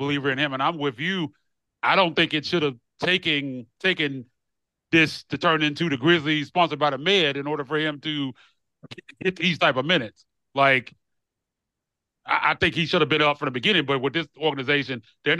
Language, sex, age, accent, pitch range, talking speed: English, male, 30-49, American, 135-165 Hz, 205 wpm